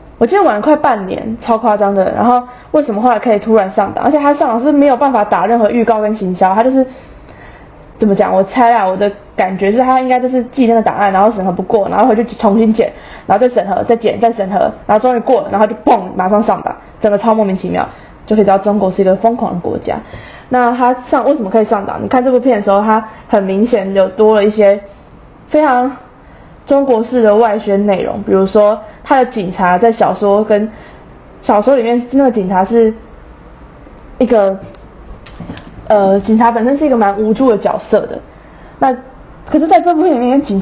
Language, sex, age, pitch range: Chinese, female, 20-39, 205-250 Hz